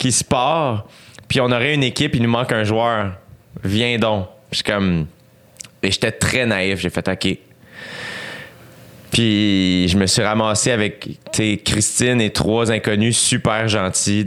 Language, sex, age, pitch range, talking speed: French, male, 30-49, 95-120 Hz, 150 wpm